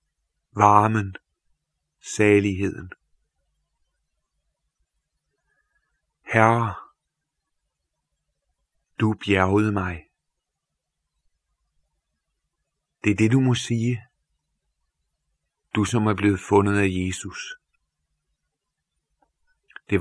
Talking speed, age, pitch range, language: 60 wpm, 50-69, 80-115 Hz, Danish